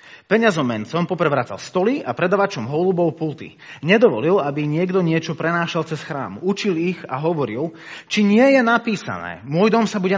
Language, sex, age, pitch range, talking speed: Slovak, male, 30-49, 130-195 Hz, 160 wpm